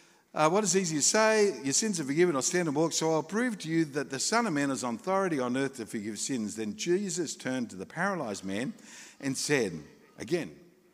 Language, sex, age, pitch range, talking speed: English, male, 60-79, 155-240 Hz, 230 wpm